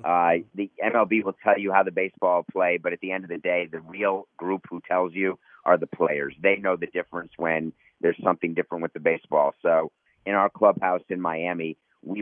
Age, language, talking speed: 50-69, English, 215 wpm